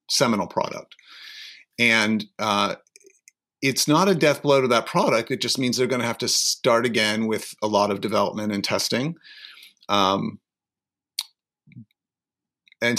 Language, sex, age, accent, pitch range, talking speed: English, male, 40-59, American, 105-135 Hz, 145 wpm